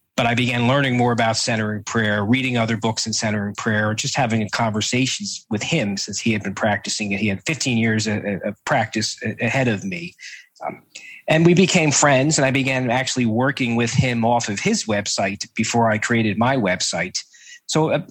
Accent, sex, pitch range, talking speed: American, male, 110-135 Hz, 185 wpm